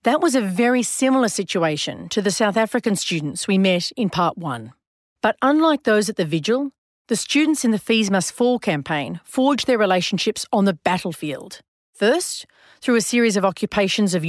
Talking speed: 180 wpm